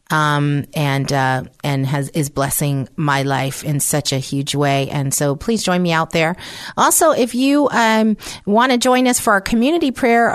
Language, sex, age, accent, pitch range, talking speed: English, female, 40-59, American, 150-215 Hz, 190 wpm